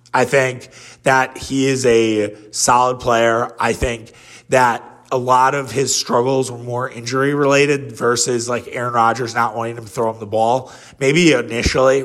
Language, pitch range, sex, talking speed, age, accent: English, 120-140 Hz, male, 170 wpm, 30-49, American